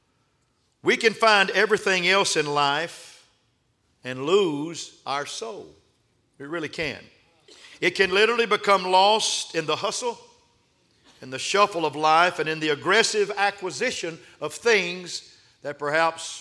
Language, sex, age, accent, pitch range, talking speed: English, male, 50-69, American, 130-180 Hz, 130 wpm